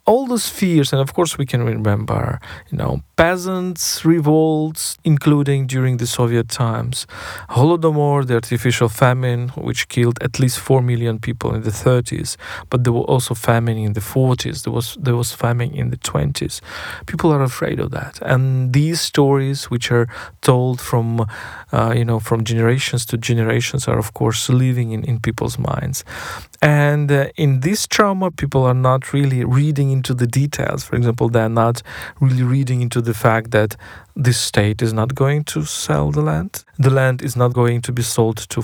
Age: 40-59